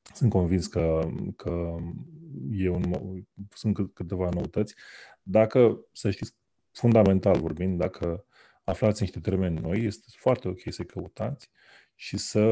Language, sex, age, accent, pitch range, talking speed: Romanian, male, 30-49, native, 90-110 Hz, 135 wpm